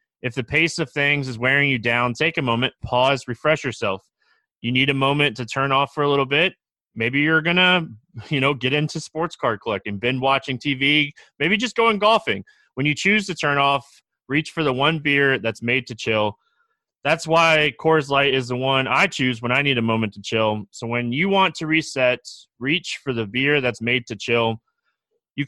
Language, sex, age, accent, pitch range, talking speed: English, male, 20-39, American, 120-160 Hz, 210 wpm